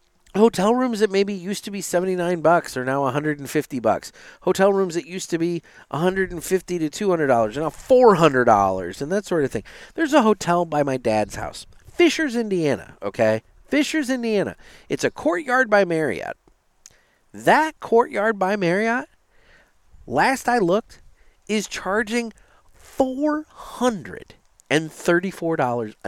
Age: 40-59